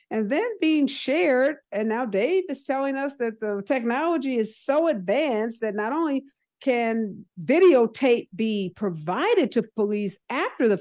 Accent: American